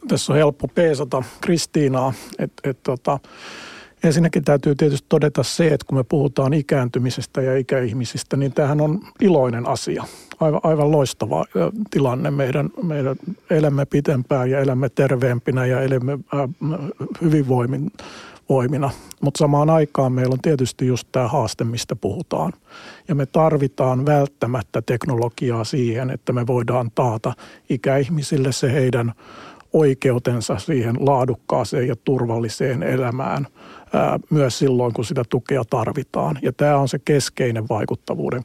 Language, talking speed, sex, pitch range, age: Finnish, 130 wpm, male, 125-150 Hz, 60-79